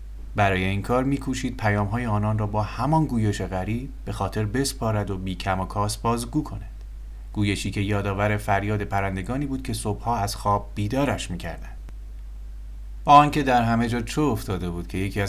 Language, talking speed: Persian, 165 wpm